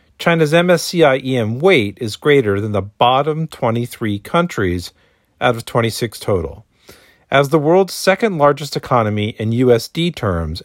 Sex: male